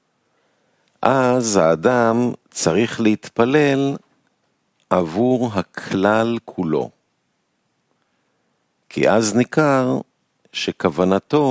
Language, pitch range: Hebrew, 95-130 Hz